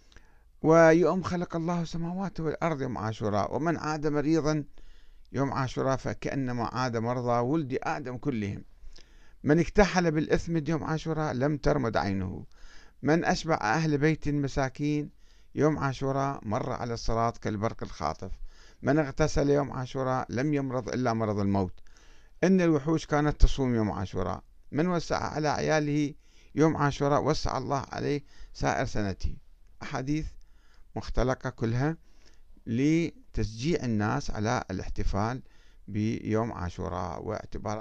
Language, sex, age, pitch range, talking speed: Arabic, male, 50-69, 105-150 Hz, 115 wpm